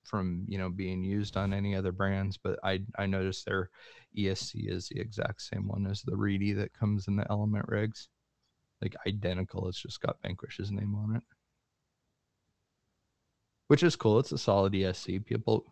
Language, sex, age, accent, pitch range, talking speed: English, male, 30-49, American, 85-100 Hz, 175 wpm